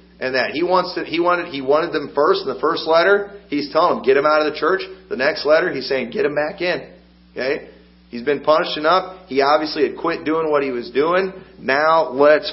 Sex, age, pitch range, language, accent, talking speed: male, 40-59, 125-160 Hz, English, American, 235 wpm